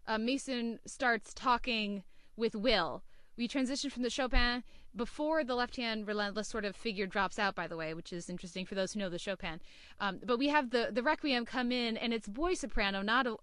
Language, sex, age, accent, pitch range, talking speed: English, female, 20-39, American, 210-250 Hz, 210 wpm